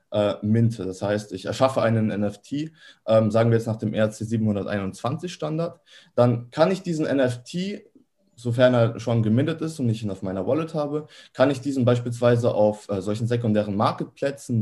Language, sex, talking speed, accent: German, male, 165 wpm, German